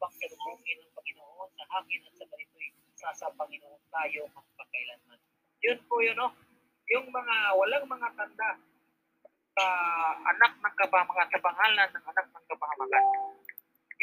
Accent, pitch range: Filipino, 175-235 Hz